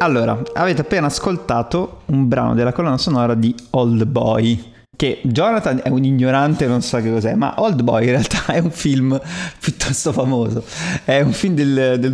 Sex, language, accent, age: male, Italian, native, 30-49